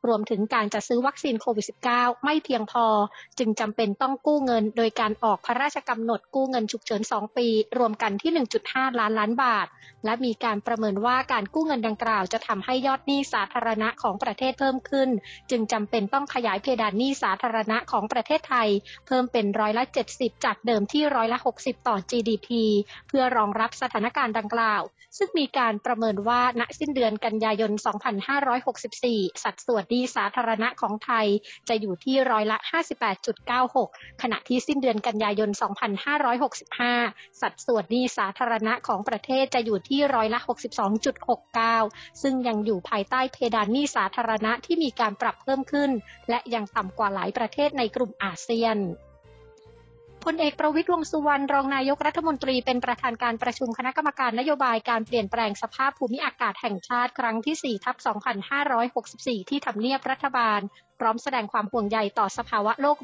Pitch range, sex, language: 220-260 Hz, female, Thai